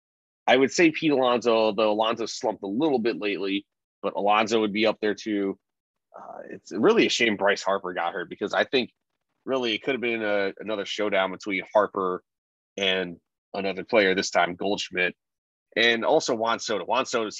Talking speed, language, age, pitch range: 185 wpm, English, 30-49, 100-130 Hz